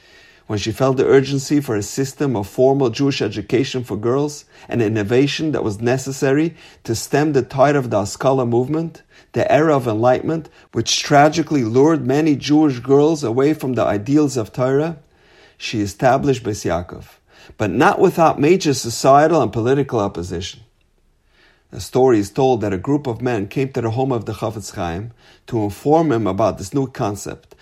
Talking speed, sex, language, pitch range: 170 wpm, male, English, 110-145 Hz